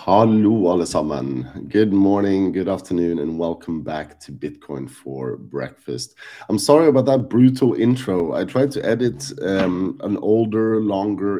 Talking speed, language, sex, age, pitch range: 145 wpm, English, male, 30-49, 85-120 Hz